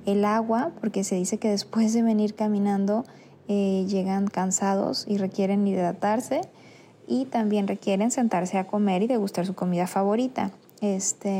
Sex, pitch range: female, 200-245 Hz